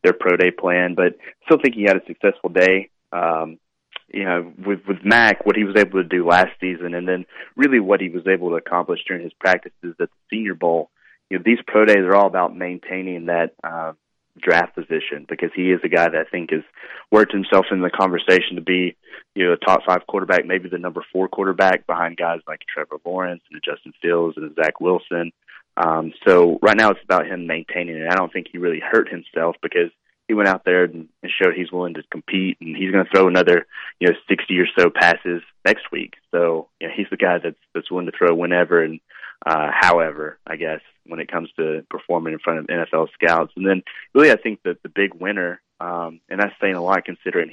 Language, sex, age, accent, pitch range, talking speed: English, male, 30-49, American, 85-95 Hz, 225 wpm